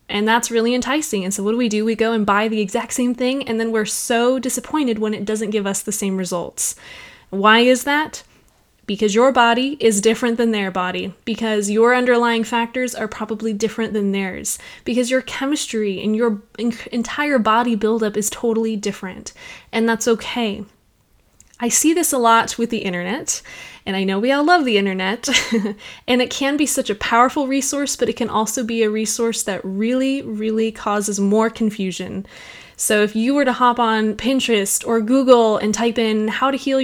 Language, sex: English, female